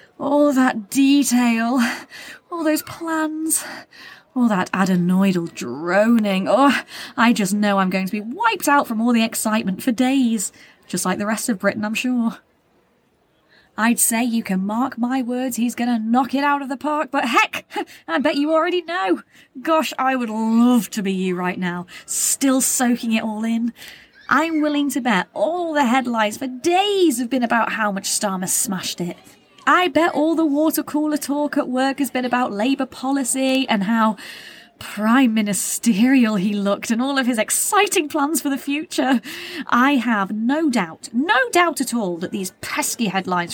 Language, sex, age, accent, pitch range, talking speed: English, female, 20-39, British, 205-285 Hz, 180 wpm